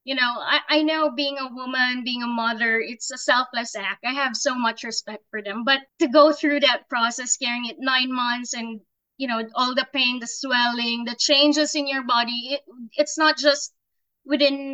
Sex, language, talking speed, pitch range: female, Filipino, 205 wpm, 235-290 Hz